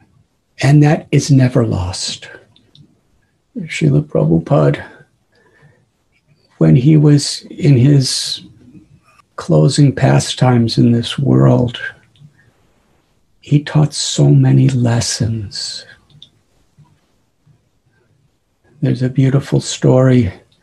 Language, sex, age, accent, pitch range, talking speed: English, male, 60-79, American, 115-145 Hz, 75 wpm